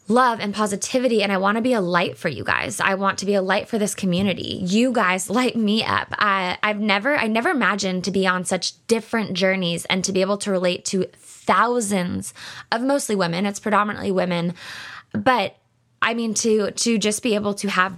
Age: 20-39